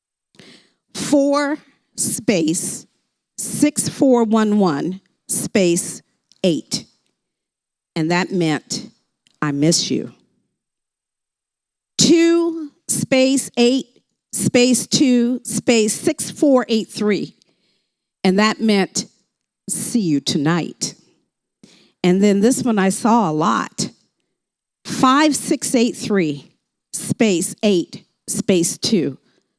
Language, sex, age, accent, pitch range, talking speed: English, female, 50-69, American, 185-245 Hz, 95 wpm